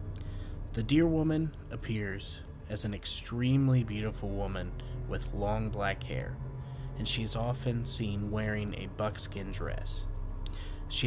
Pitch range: 95-125 Hz